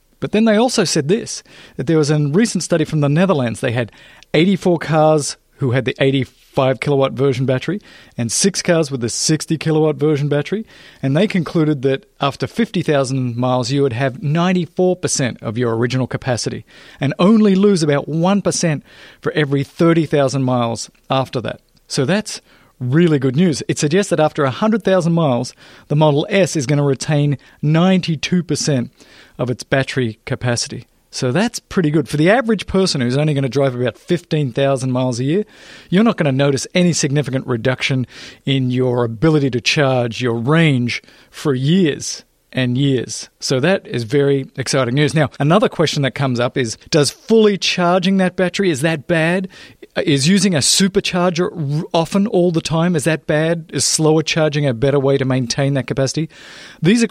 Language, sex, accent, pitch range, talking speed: English, male, Australian, 135-175 Hz, 175 wpm